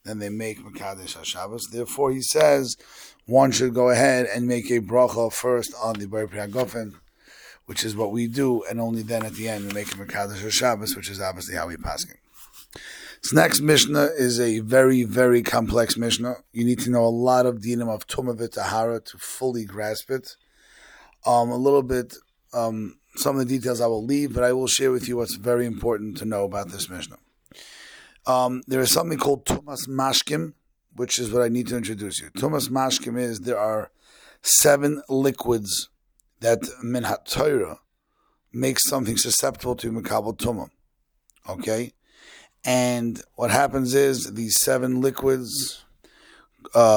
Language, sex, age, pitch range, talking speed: English, male, 30-49, 110-130 Hz, 170 wpm